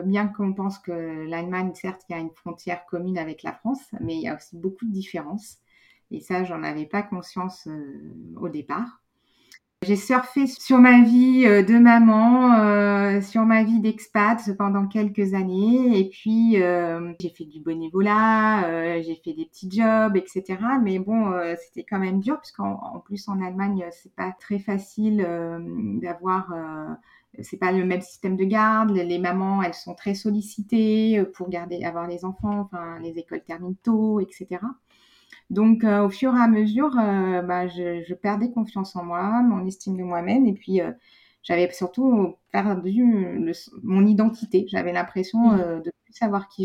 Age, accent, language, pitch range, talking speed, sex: 30-49, French, French, 180-220 Hz, 180 wpm, female